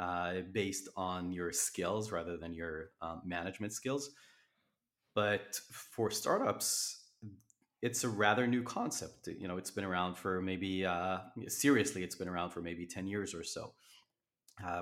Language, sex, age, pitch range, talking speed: English, male, 30-49, 90-110 Hz, 155 wpm